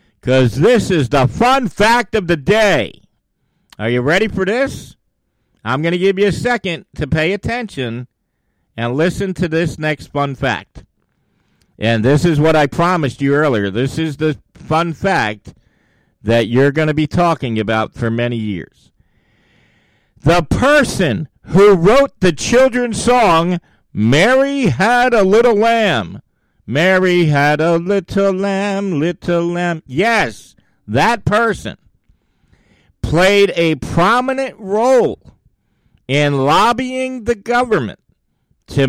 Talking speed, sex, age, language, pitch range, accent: 130 wpm, male, 50-69, English, 130-200 Hz, American